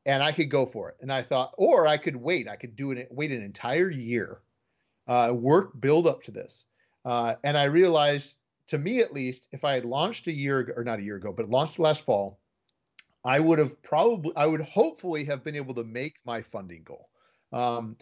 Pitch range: 120-155 Hz